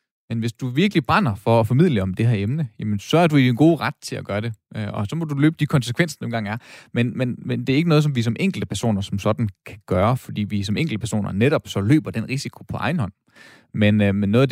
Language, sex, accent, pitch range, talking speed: Danish, male, native, 105-135 Hz, 280 wpm